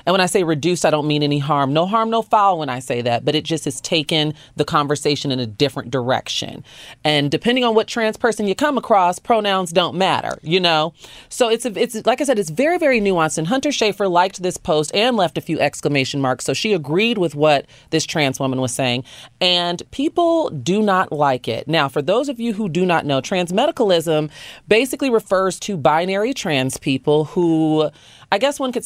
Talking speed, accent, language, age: 215 wpm, American, English, 30-49